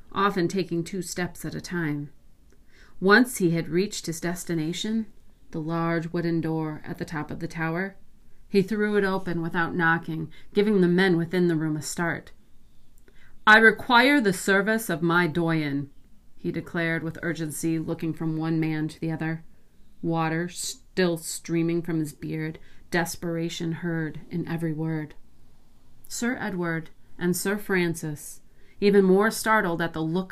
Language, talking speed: English, 150 wpm